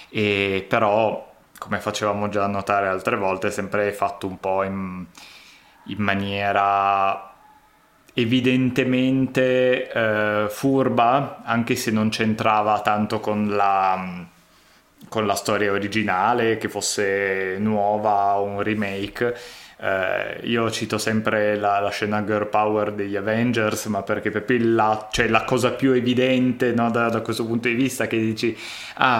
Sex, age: male, 20-39